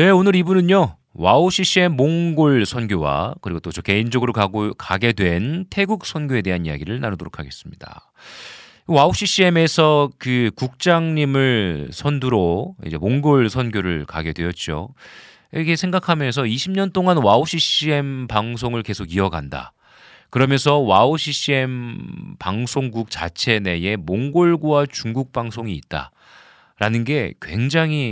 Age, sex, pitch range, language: 40-59, male, 95-145 Hz, Korean